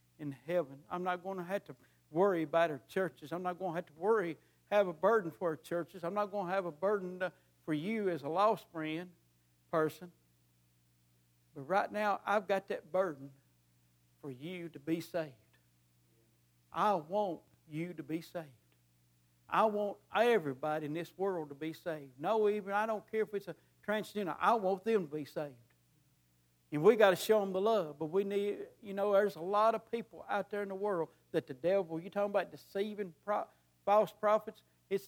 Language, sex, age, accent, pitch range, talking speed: English, male, 60-79, American, 130-190 Hz, 195 wpm